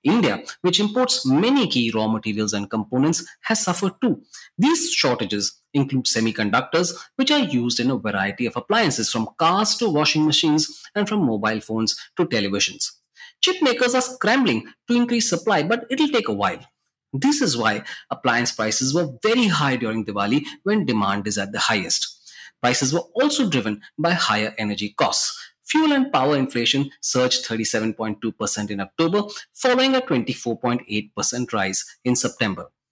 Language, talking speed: English, 155 wpm